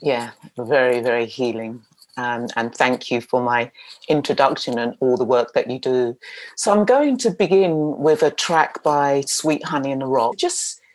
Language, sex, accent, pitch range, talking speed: English, female, British, 135-165 Hz, 180 wpm